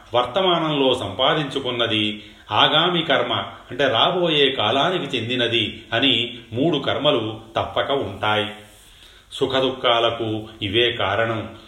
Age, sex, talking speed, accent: 30-49, male, 80 wpm, native